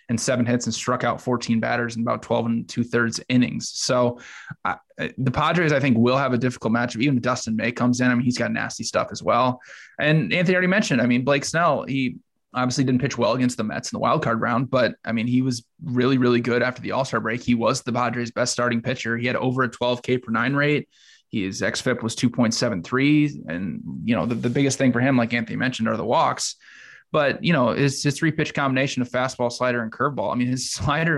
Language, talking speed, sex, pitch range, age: English, 245 wpm, male, 120-145 Hz, 20-39